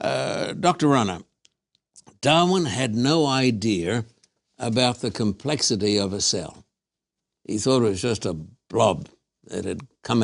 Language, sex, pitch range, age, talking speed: English, male, 110-145 Hz, 60-79, 135 wpm